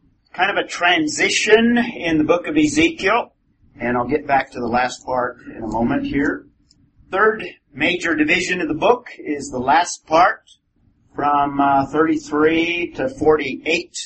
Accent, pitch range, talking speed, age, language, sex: American, 150-185 Hz, 155 wpm, 50-69, English, male